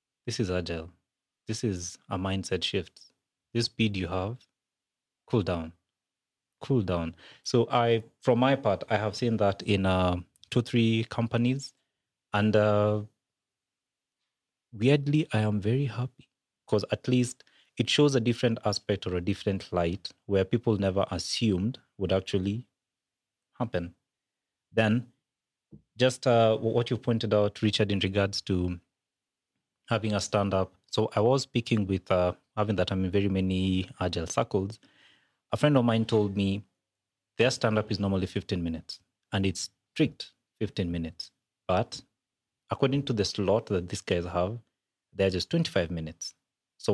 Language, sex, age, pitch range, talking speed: English, male, 30-49, 95-120 Hz, 145 wpm